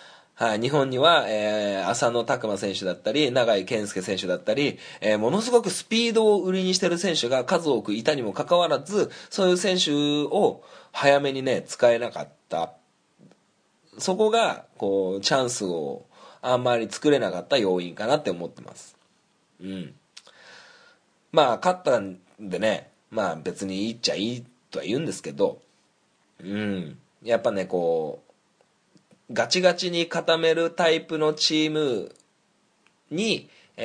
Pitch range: 105-170 Hz